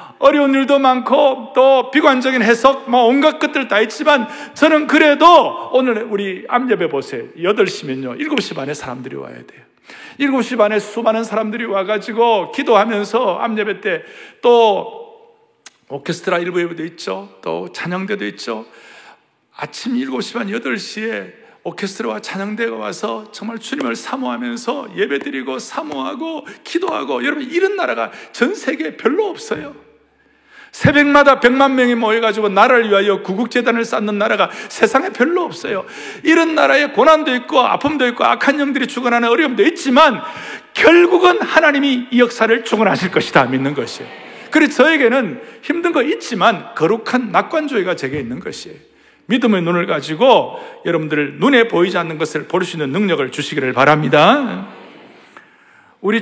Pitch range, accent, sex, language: 205-290 Hz, native, male, Korean